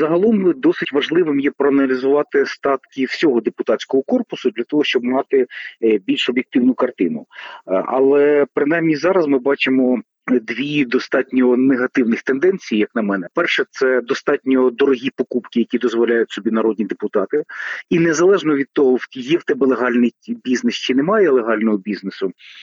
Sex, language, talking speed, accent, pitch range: male, Ukrainian, 140 wpm, native, 120-145 Hz